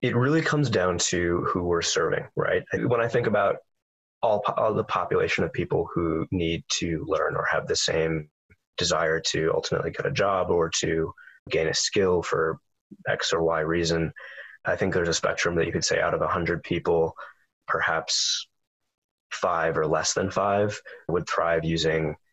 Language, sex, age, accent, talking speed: English, male, 20-39, American, 175 wpm